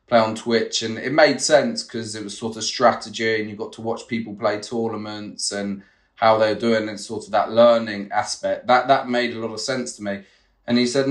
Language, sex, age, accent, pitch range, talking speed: English, male, 30-49, British, 110-125 Hz, 230 wpm